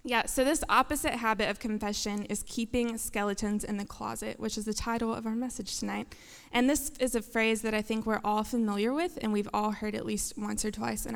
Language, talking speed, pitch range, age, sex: English, 230 wpm, 205-240 Hz, 20-39, female